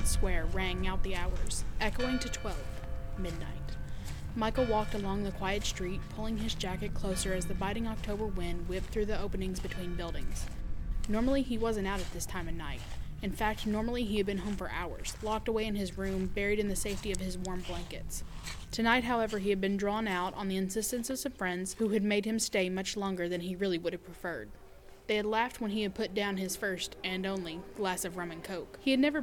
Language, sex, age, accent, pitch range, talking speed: English, female, 10-29, American, 185-220 Hz, 220 wpm